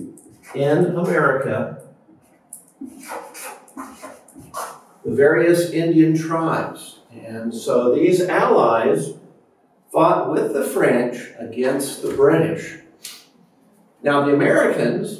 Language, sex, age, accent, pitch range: Chinese, male, 50-69, American, 140-215 Hz